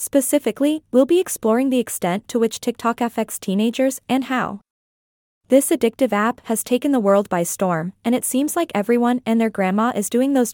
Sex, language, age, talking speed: female, English, 20-39, 190 wpm